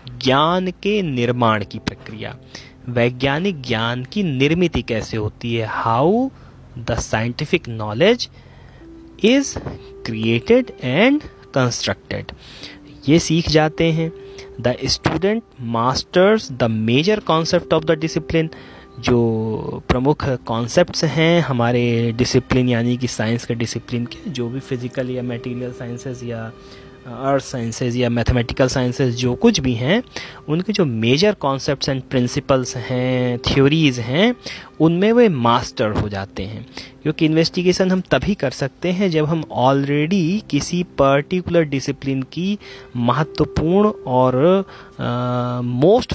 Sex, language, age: male, Hindi, 30-49